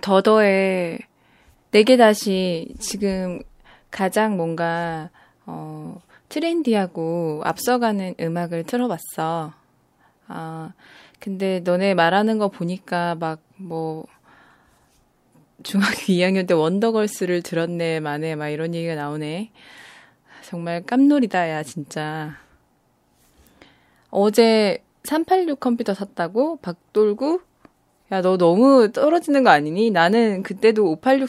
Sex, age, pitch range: female, 20-39, 165-230 Hz